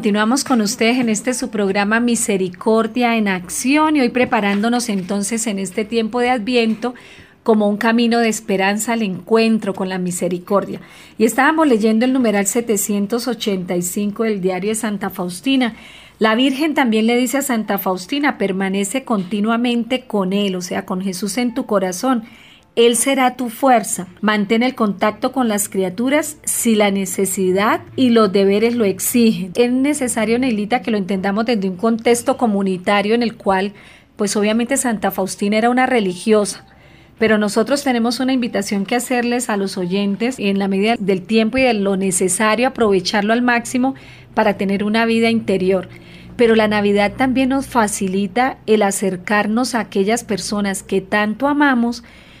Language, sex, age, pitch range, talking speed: Spanish, female, 40-59, 200-245 Hz, 160 wpm